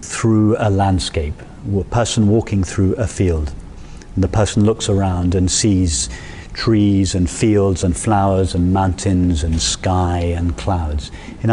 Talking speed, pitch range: 140 wpm, 95-120 Hz